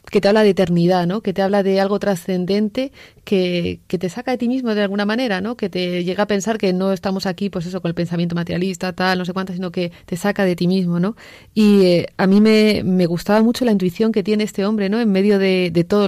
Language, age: Spanish, 30-49